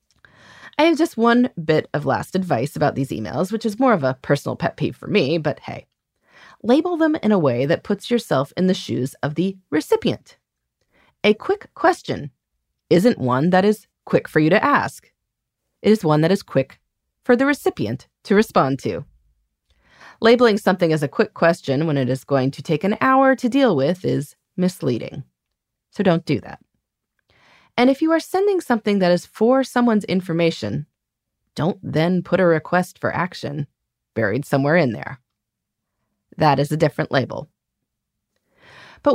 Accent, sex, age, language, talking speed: American, female, 30-49, English, 170 wpm